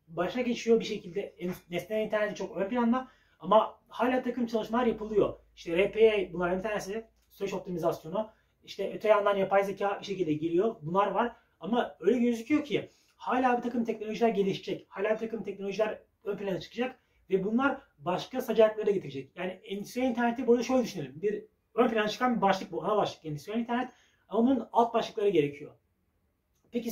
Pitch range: 185-240 Hz